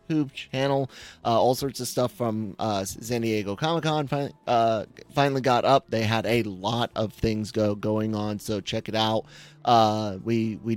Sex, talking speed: male, 180 wpm